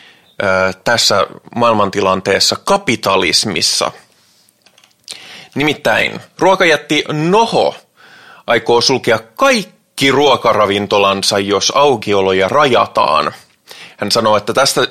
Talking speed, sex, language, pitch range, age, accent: 70 wpm, male, Finnish, 100-130 Hz, 20-39, native